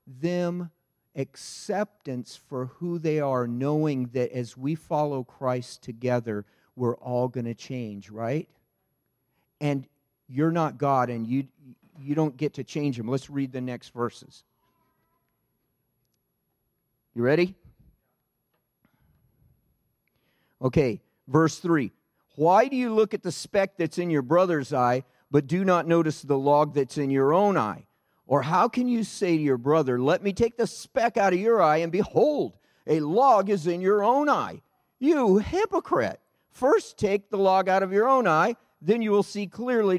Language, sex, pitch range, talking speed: English, male, 125-185 Hz, 160 wpm